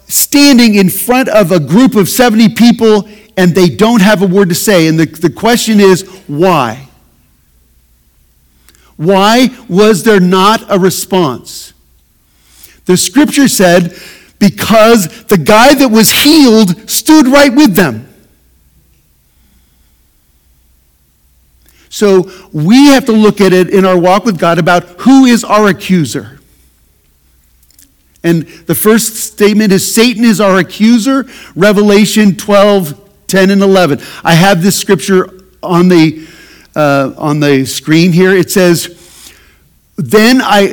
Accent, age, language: American, 50-69, English